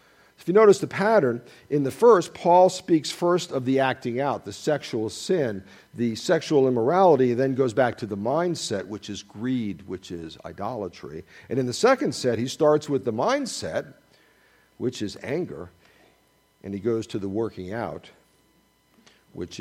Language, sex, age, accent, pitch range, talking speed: English, male, 50-69, American, 115-155 Hz, 170 wpm